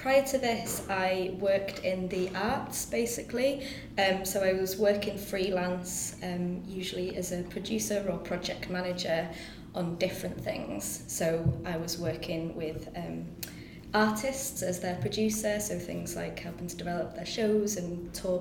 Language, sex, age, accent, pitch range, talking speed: English, female, 20-39, British, 170-205 Hz, 150 wpm